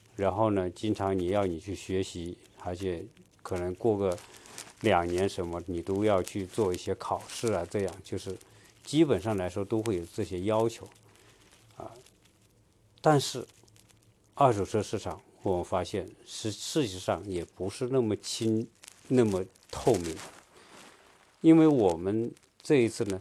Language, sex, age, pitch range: Chinese, male, 50-69, 95-115 Hz